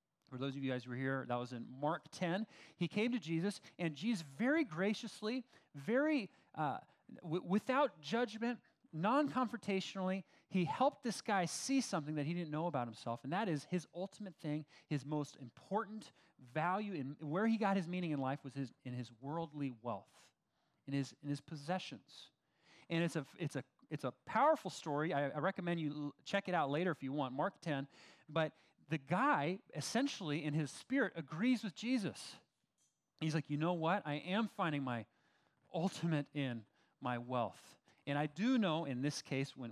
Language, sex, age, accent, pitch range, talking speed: English, male, 30-49, American, 140-200 Hz, 185 wpm